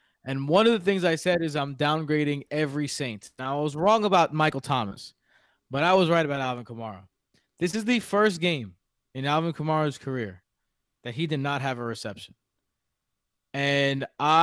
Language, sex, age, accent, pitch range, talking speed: English, male, 20-39, American, 130-155 Hz, 180 wpm